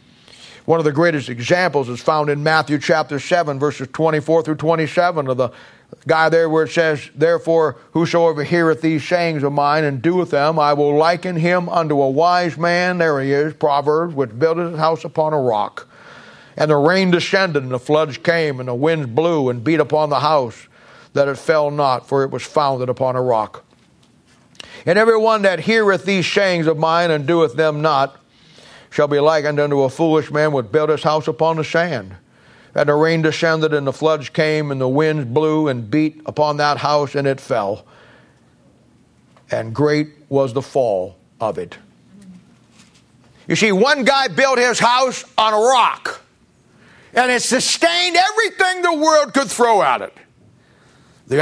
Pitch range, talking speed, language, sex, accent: 145-175 Hz, 180 wpm, English, male, American